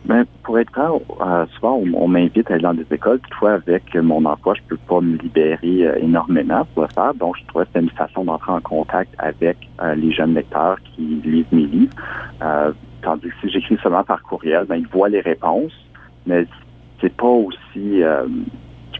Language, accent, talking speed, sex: French, French, 200 wpm, male